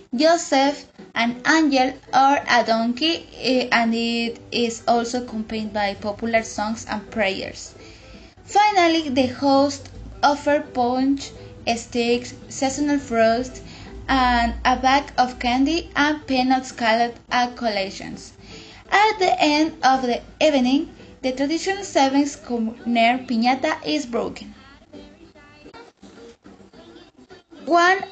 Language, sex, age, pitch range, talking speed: English, female, 10-29, 230-290 Hz, 95 wpm